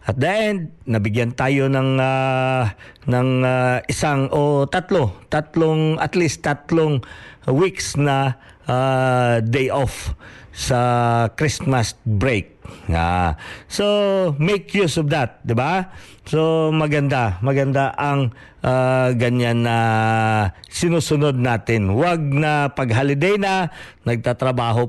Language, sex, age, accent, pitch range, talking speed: Filipino, male, 50-69, native, 120-160 Hz, 115 wpm